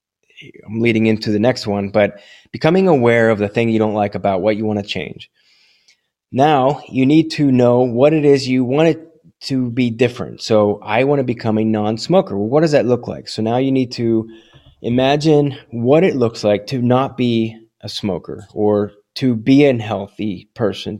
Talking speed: 195 wpm